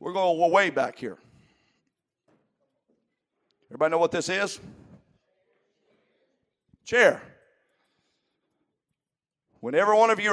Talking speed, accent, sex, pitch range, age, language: 85 wpm, American, male, 155-225 Hz, 50-69, English